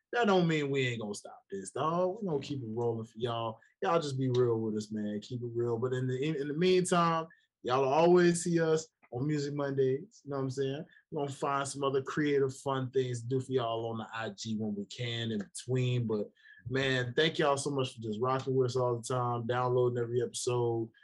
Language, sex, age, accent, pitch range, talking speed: English, male, 20-39, American, 115-150 Hz, 235 wpm